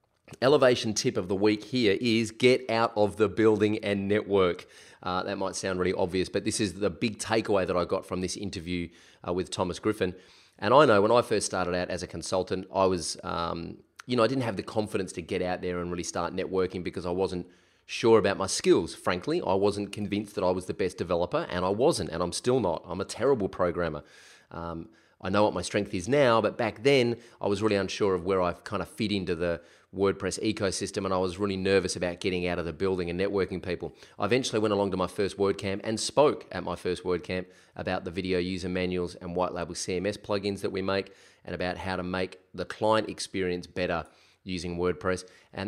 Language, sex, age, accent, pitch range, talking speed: English, male, 30-49, Australian, 90-105 Hz, 225 wpm